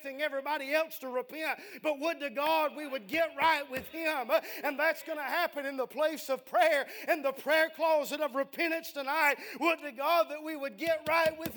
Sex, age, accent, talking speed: male, 40-59, American, 205 wpm